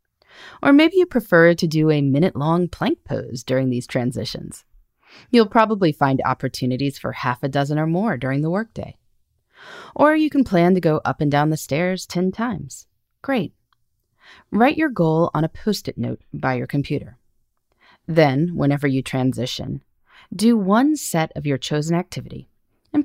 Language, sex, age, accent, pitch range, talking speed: English, female, 30-49, American, 135-200 Hz, 160 wpm